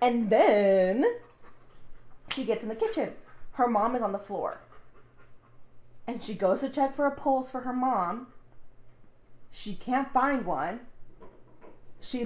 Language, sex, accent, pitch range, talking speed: English, female, American, 200-255 Hz, 140 wpm